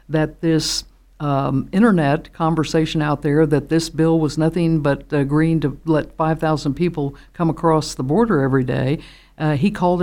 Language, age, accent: English, 60-79, American